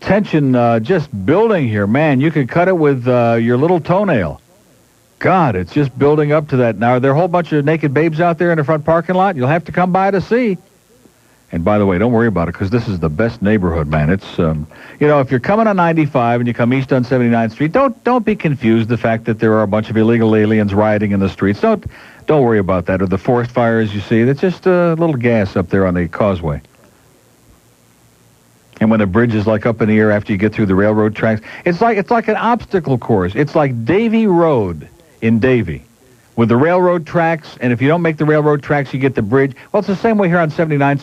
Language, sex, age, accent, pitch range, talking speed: English, male, 60-79, American, 110-155 Hz, 250 wpm